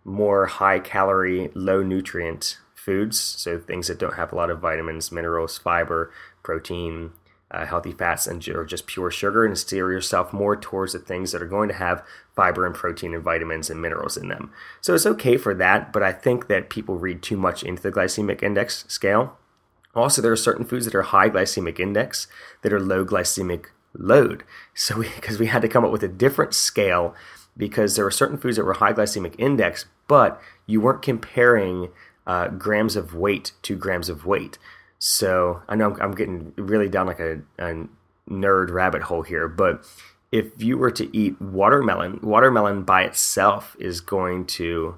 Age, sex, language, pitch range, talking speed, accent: 30-49, male, English, 85-105 Hz, 185 wpm, American